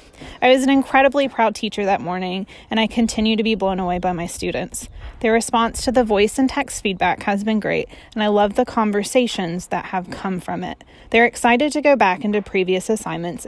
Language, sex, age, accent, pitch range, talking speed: English, female, 20-39, American, 195-245 Hz, 210 wpm